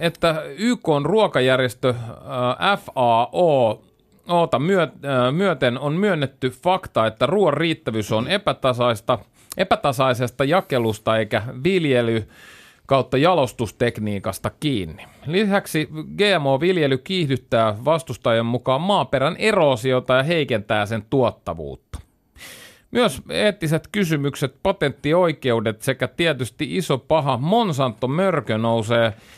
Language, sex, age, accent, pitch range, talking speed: Finnish, male, 30-49, native, 120-180 Hz, 85 wpm